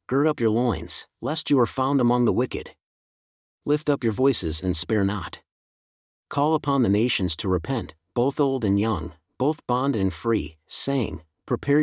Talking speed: 170 wpm